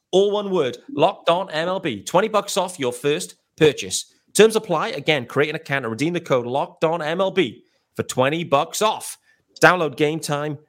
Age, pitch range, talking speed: 30-49, 140-210 Hz, 180 wpm